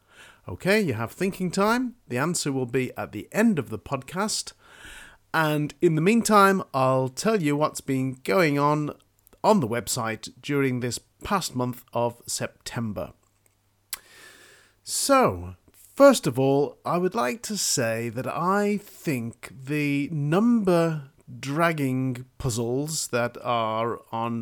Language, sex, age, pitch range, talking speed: English, male, 40-59, 120-165 Hz, 130 wpm